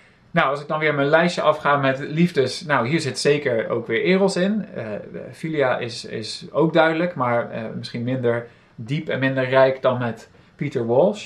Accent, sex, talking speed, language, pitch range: Dutch, male, 190 wpm, Dutch, 120-150 Hz